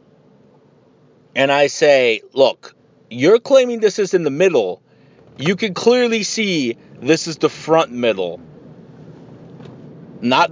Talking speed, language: 120 wpm, English